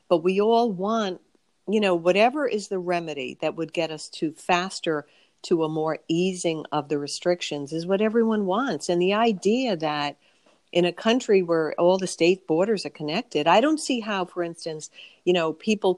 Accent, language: American, English